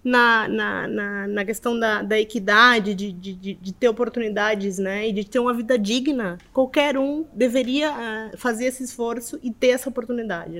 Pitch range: 205-255 Hz